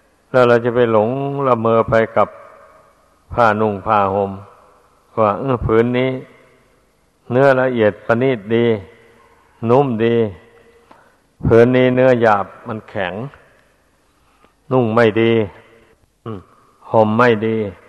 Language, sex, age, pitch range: Thai, male, 60-79, 100-115 Hz